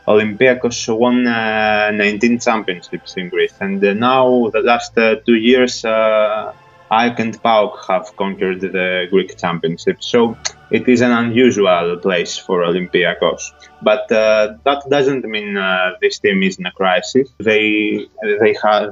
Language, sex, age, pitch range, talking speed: English, male, 20-39, 100-120 Hz, 150 wpm